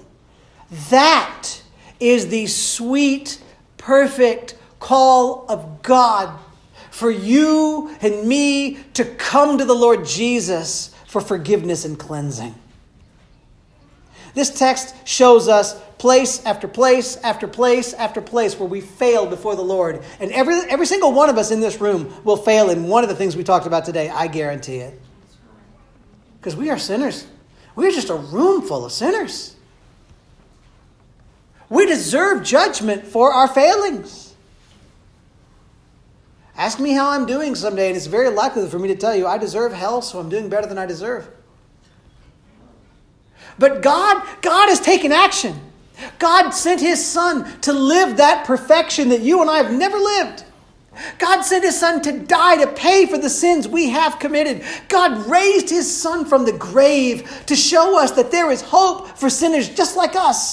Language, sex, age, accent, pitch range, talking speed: English, male, 40-59, American, 210-315 Hz, 160 wpm